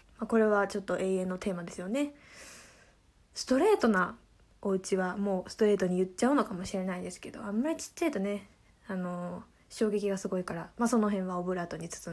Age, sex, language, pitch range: 20-39, female, Japanese, 185-235 Hz